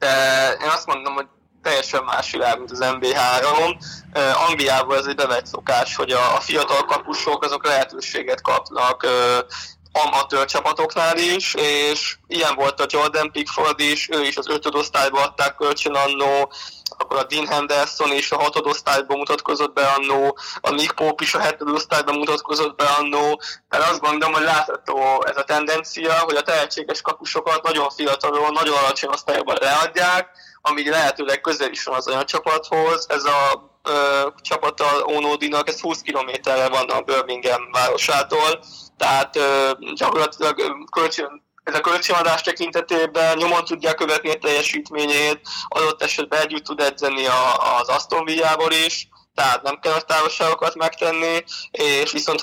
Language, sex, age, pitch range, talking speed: Hungarian, male, 20-39, 140-160 Hz, 145 wpm